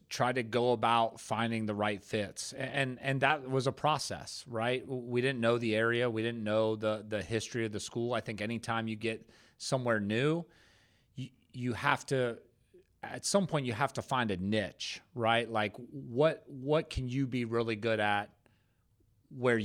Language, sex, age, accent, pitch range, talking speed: English, male, 30-49, American, 105-120 Hz, 185 wpm